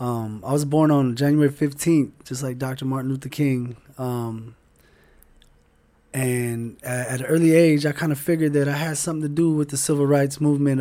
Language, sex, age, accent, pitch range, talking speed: English, male, 20-39, American, 120-150 Hz, 195 wpm